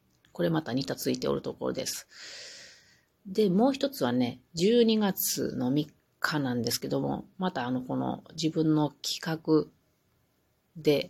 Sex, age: female, 40-59